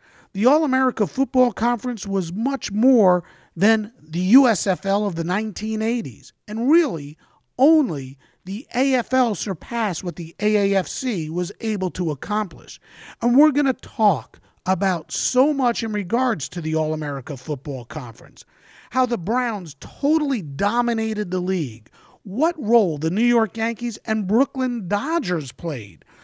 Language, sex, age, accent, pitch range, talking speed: English, male, 50-69, American, 180-240 Hz, 135 wpm